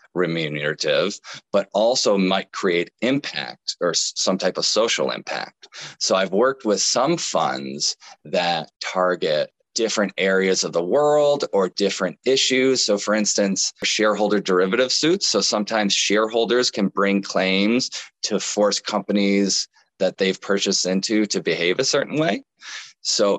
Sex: male